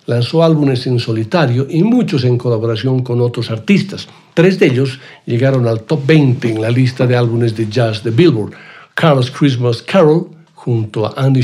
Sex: male